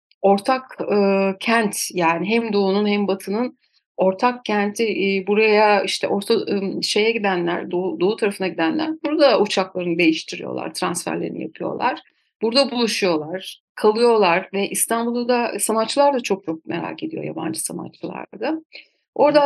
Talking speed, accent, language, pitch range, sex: 125 wpm, native, Turkish, 195-235 Hz, female